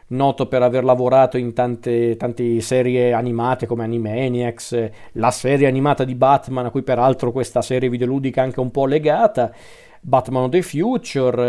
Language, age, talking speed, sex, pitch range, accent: Italian, 40-59, 160 wpm, male, 120-150 Hz, native